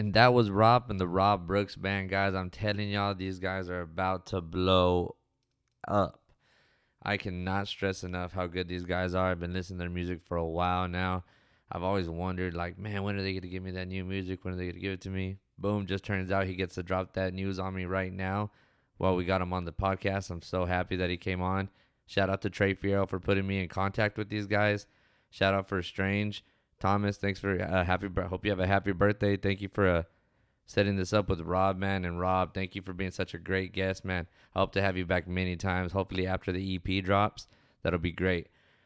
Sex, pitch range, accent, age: male, 90-100 Hz, American, 20-39